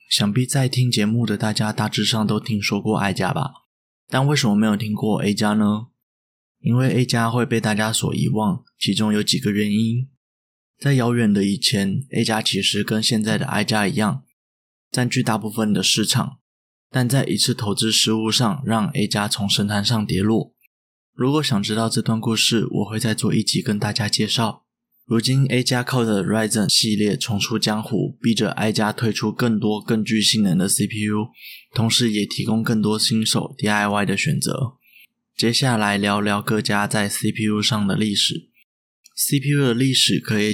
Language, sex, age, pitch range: Chinese, male, 20-39, 105-125 Hz